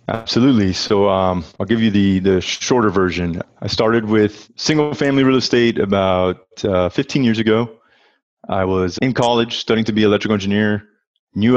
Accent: American